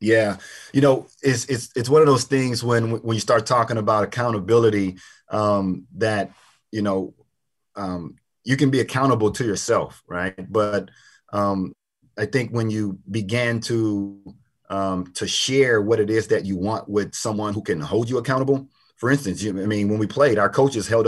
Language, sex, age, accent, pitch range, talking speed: English, male, 30-49, American, 100-120 Hz, 180 wpm